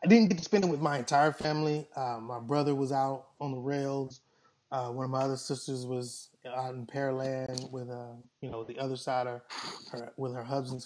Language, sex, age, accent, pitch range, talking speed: English, male, 20-39, American, 130-165 Hz, 220 wpm